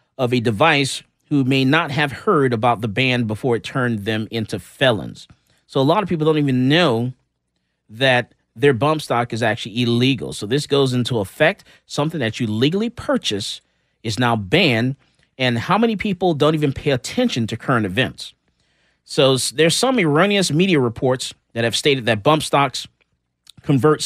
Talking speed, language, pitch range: 170 wpm, English, 125-165 Hz